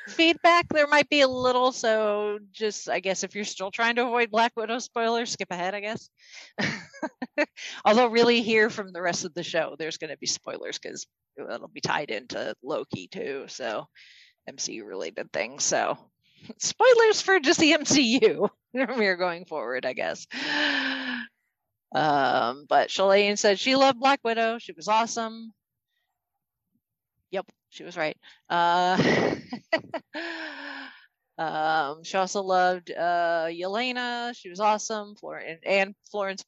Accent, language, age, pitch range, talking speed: American, English, 40-59, 170-240 Hz, 145 wpm